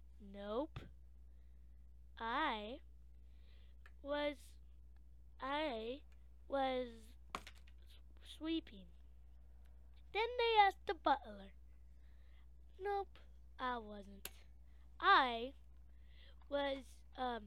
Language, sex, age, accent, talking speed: English, female, 20-39, American, 55 wpm